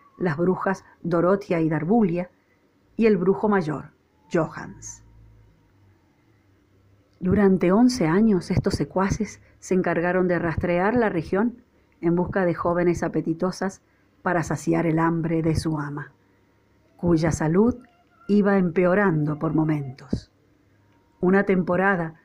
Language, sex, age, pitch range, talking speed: Spanish, female, 40-59, 160-210 Hz, 110 wpm